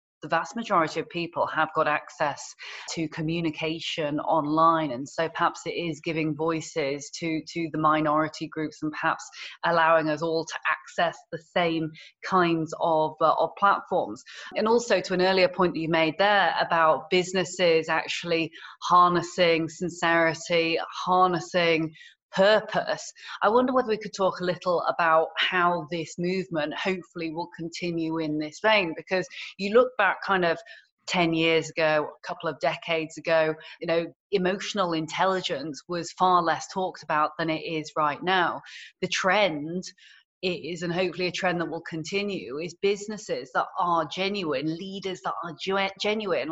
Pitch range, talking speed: 160-190 Hz, 155 wpm